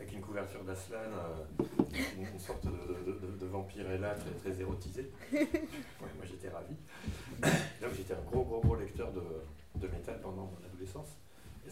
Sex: male